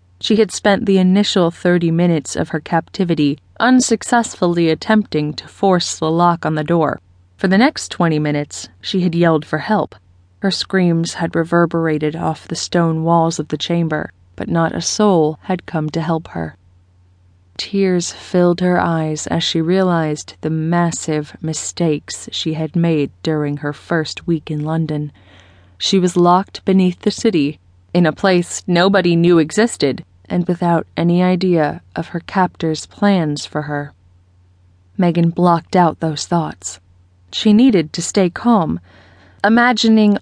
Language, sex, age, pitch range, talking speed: English, female, 20-39, 150-180 Hz, 150 wpm